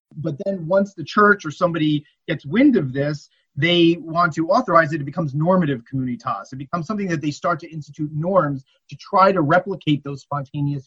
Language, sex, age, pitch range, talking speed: English, male, 30-49, 145-195 Hz, 195 wpm